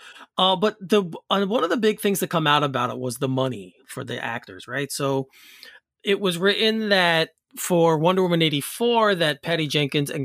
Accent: American